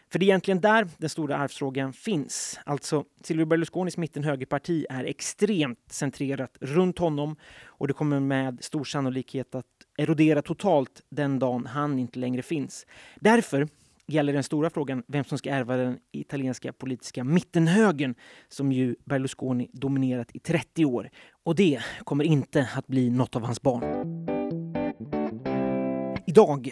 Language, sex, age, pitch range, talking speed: Swedish, male, 30-49, 130-160 Hz, 145 wpm